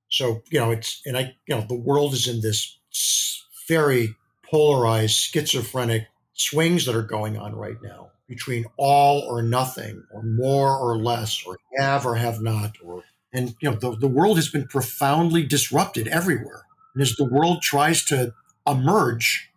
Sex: male